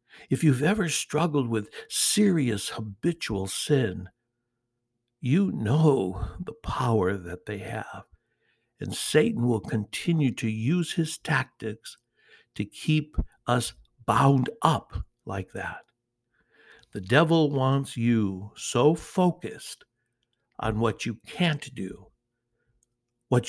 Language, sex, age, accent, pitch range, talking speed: English, male, 60-79, American, 110-130 Hz, 105 wpm